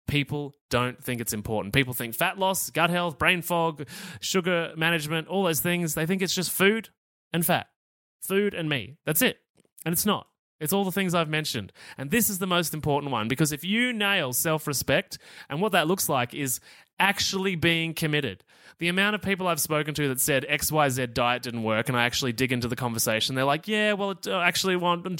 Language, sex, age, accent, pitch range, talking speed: English, male, 20-39, Australian, 130-175 Hz, 205 wpm